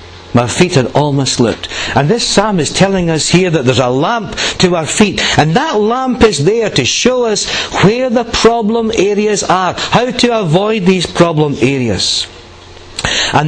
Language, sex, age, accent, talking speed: English, male, 60-79, British, 175 wpm